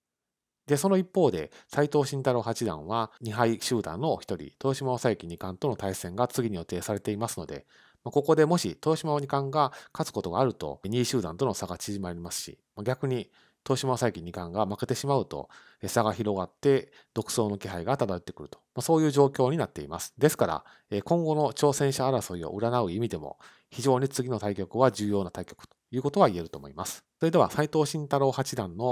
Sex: male